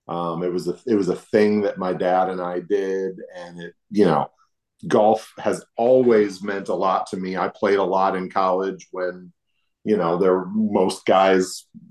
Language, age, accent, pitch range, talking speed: English, 40-59, American, 90-120 Hz, 190 wpm